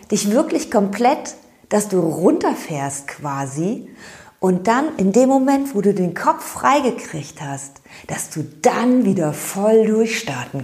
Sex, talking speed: female, 135 wpm